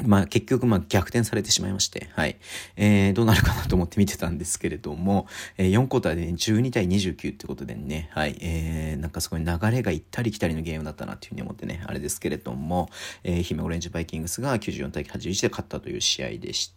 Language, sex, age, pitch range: Japanese, male, 40-59, 85-105 Hz